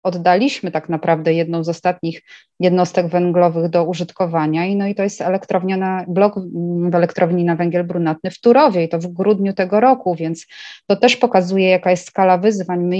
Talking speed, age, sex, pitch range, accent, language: 185 wpm, 20-39, female, 165-195 Hz, native, Polish